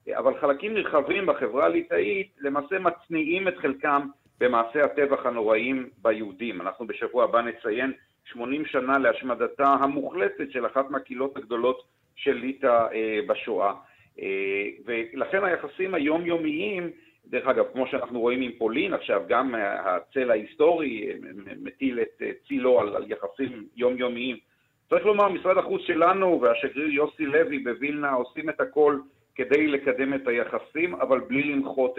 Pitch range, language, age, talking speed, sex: 125-170 Hz, Hebrew, 50-69, 125 wpm, male